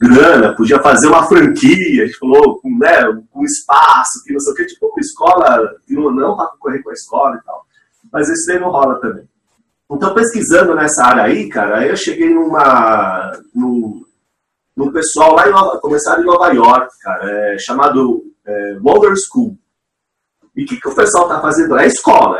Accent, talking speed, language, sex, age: Brazilian, 195 wpm, Portuguese, male, 30-49